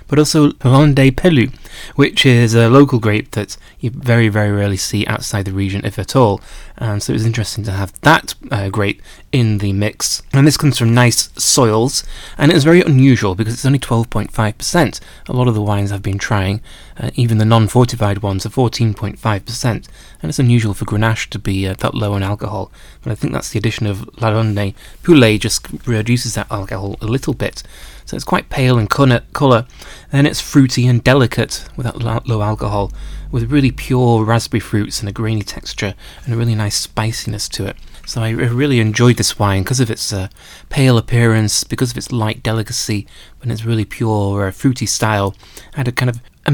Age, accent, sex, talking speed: 30-49, British, male, 200 wpm